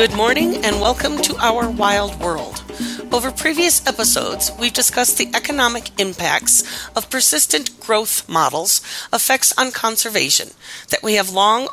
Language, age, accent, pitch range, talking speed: English, 40-59, American, 185-235 Hz, 140 wpm